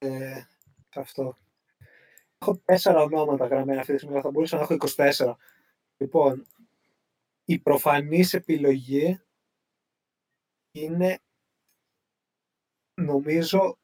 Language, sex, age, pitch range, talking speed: Greek, male, 30-49, 135-165 Hz, 90 wpm